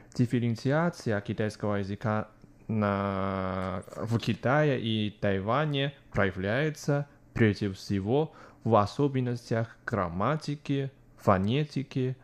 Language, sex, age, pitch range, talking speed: Russian, male, 20-39, 110-140 Hz, 75 wpm